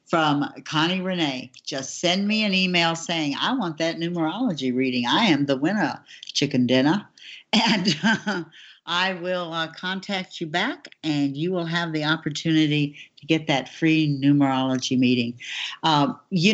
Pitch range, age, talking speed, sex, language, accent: 150-185 Hz, 60-79, 150 wpm, female, English, American